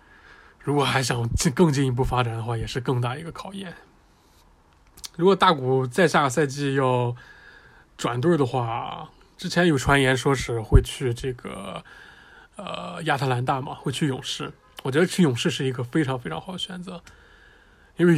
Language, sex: Chinese, male